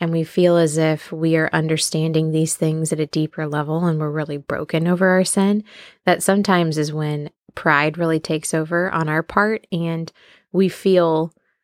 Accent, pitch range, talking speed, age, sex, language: American, 155-180 Hz, 180 wpm, 20-39, female, English